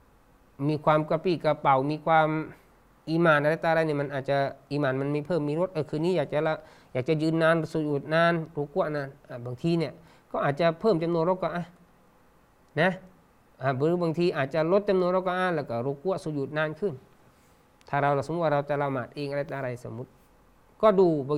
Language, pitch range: Thai, 135-170 Hz